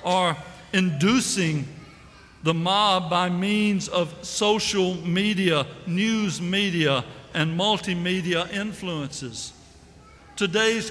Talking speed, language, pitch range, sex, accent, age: 85 wpm, English, 140-190 Hz, male, American, 60-79